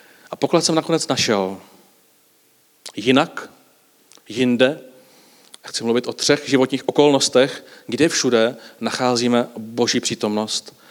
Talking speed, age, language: 105 wpm, 40-59, Czech